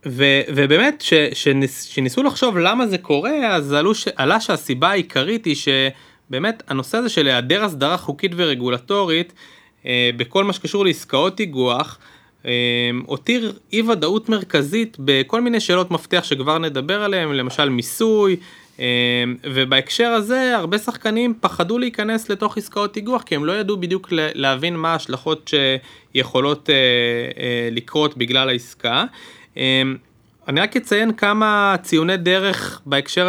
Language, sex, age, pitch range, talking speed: Hebrew, male, 20-39, 130-190 Hz, 135 wpm